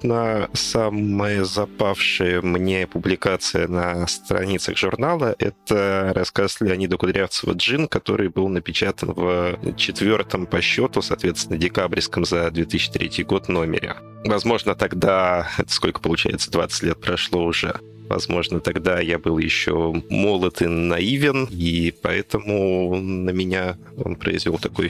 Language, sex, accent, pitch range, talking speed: Russian, male, native, 85-105 Hz, 115 wpm